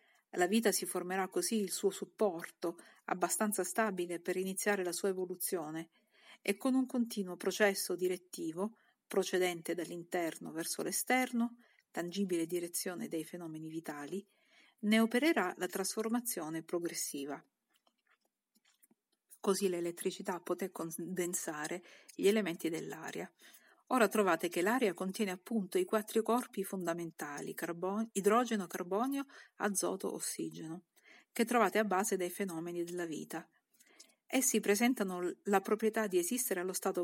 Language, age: Italian, 50-69